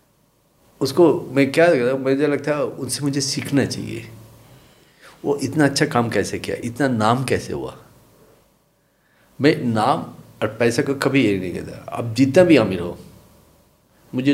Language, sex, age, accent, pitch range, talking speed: Hindi, male, 50-69, native, 110-135 Hz, 155 wpm